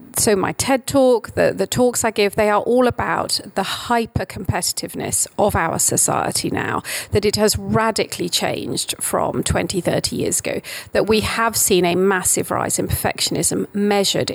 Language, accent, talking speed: English, British, 165 wpm